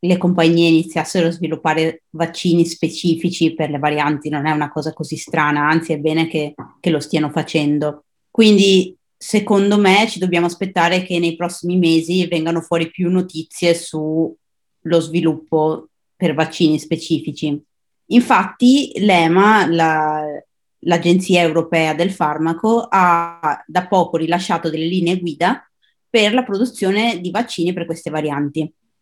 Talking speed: 130 wpm